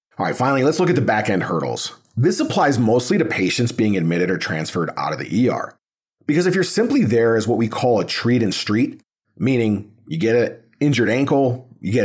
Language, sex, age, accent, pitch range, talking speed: English, male, 40-59, American, 105-125 Hz, 215 wpm